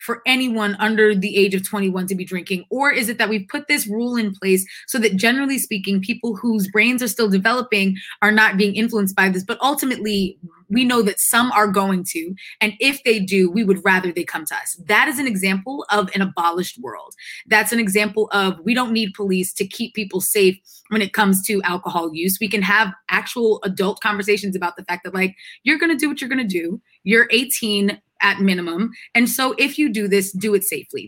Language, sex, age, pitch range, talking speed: English, female, 20-39, 190-230 Hz, 220 wpm